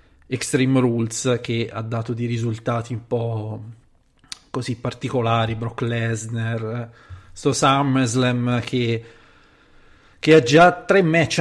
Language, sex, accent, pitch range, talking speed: Italian, male, native, 115-145 Hz, 110 wpm